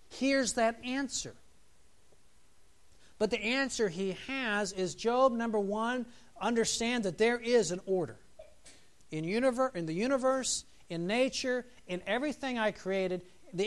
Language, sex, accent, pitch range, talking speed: English, male, American, 165-235 Hz, 130 wpm